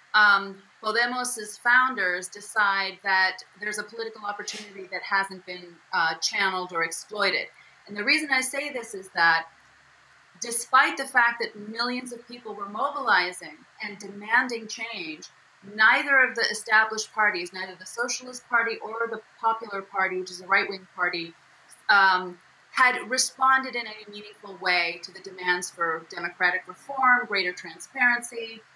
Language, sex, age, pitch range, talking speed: English, female, 30-49, 195-245 Hz, 145 wpm